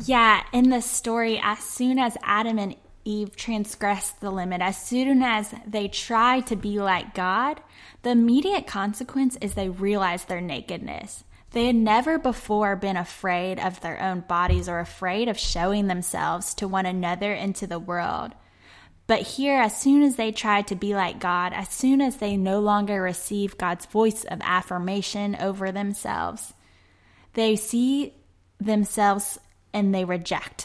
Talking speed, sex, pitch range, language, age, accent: 160 wpm, female, 190-235 Hz, English, 10-29, American